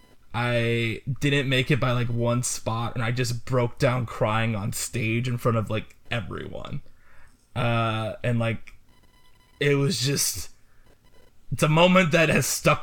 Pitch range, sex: 115-150 Hz, male